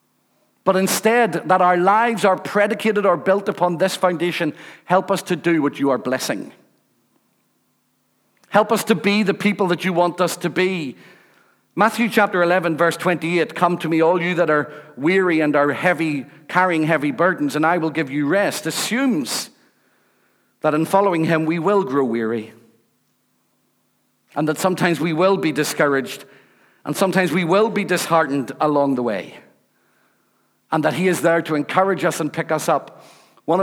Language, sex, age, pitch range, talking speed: English, male, 50-69, 150-185 Hz, 170 wpm